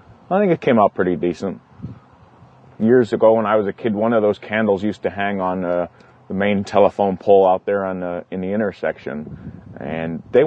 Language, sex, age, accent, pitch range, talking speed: English, male, 30-49, American, 95-115 Hz, 205 wpm